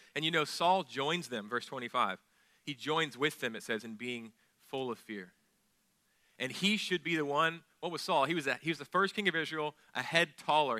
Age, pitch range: 40-59, 120-160 Hz